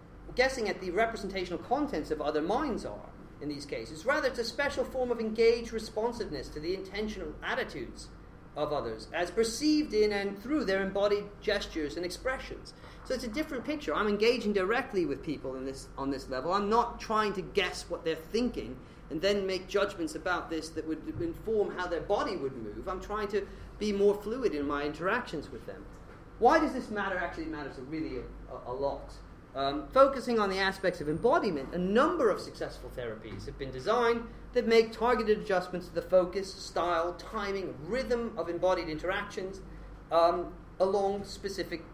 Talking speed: 180 wpm